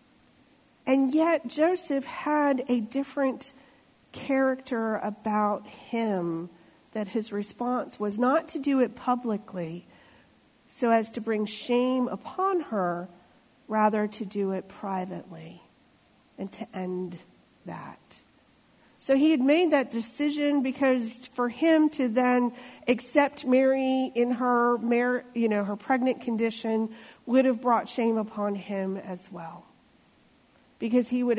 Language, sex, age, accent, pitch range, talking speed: English, female, 50-69, American, 215-275 Hz, 120 wpm